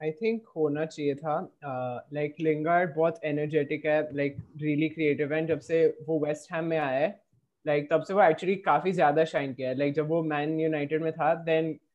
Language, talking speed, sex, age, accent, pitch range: Hindi, 215 wpm, male, 20-39, native, 150-165 Hz